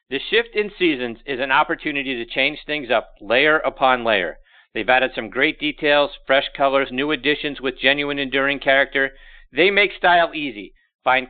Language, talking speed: English, 170 wpm